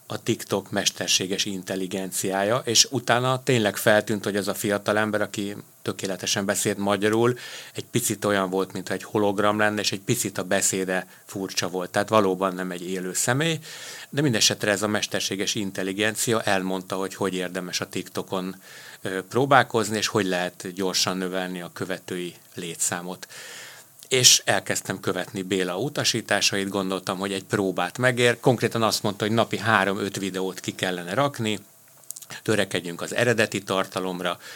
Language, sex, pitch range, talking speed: Hungarian, male, 95-110 Hz, 145 wpm